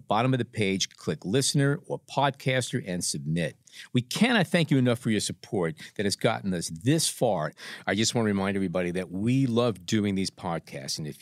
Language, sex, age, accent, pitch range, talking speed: English, male, 50-69, American, 100-140 Hz, 205 wpm